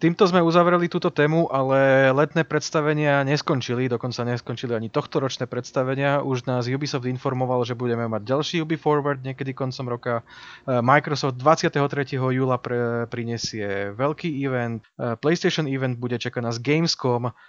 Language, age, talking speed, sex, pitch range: Slovak, 20-39, 135 wpm, male, 120-140 Hz